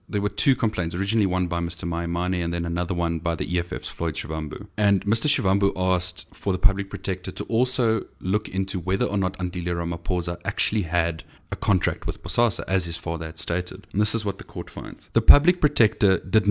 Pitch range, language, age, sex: 90-110 Hz, English, 30-49, male